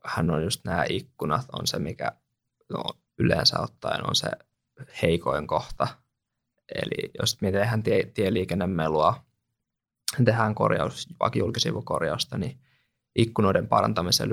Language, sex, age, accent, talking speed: Finnish, male, 20-39, native, 110 wpm